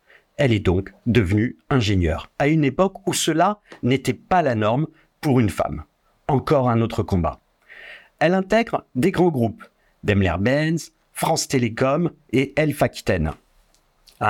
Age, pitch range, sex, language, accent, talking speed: 50-69, 115-165 Hz, male, French, French, 140 wpm